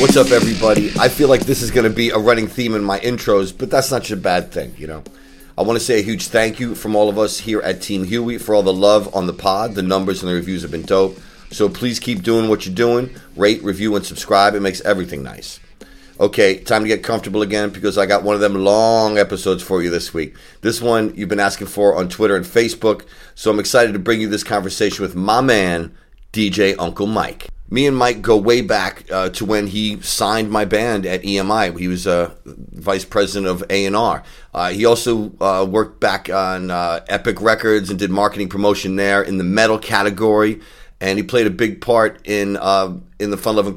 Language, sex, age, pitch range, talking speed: English, male, 40-59, 95-110 Hz, 230 wpm